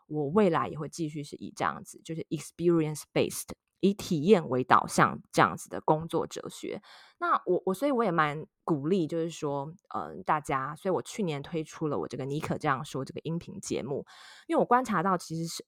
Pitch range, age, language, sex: 155-190 Hz, 20-39, Chinese, female